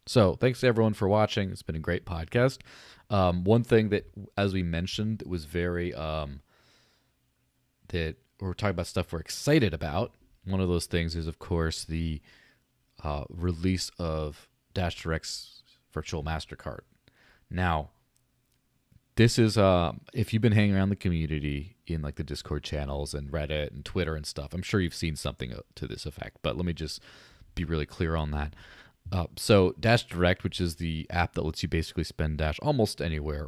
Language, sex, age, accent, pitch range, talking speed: English, male, 30-49, American, 80-100 Hz, 180 wpm